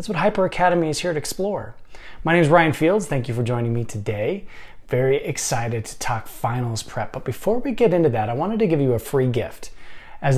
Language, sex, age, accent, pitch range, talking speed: English, male, 20-39, American, 115-145 Hz, 230 wpm